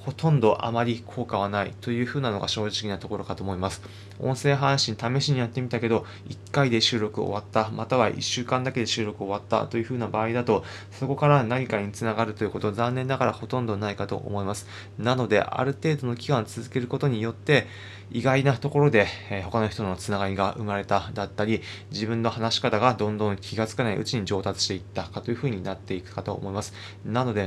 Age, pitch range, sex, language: 20-39, 100-125 Hz, male, Japanese